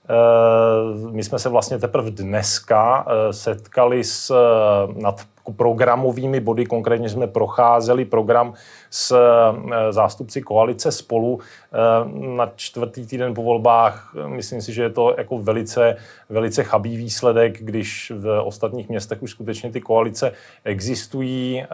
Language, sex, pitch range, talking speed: Czech, male, 110-125 Hz, 115 wpm